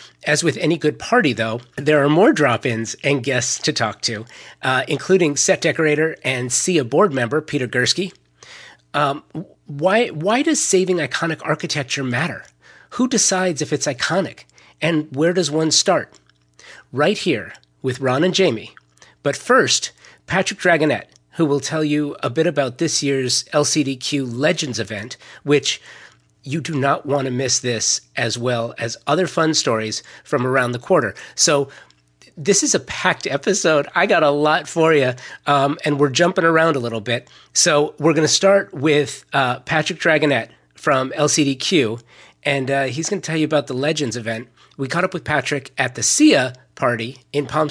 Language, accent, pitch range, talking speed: English, American, 125-160 Hz, 165 wpm